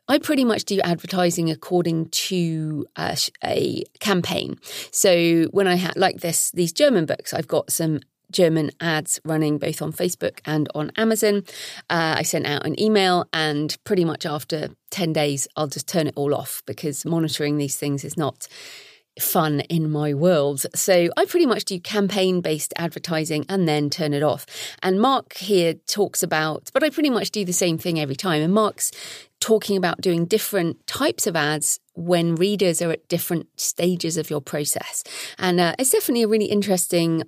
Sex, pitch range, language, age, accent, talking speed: female, 155-200 Hz, English, 40-59, British, 180 wpm